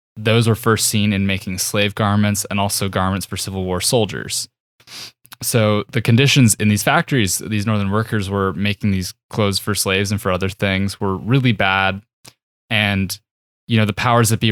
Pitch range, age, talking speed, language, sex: 95-110 Hz, 20-39, 180 wpm, English, male